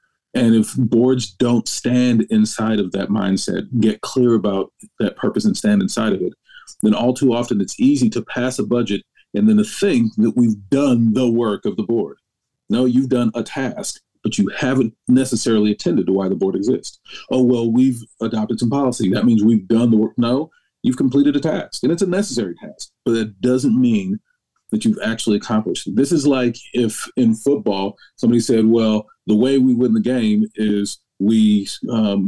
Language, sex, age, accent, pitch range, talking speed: English, male, 40-59, American, 110-155 Hz, 195 wpm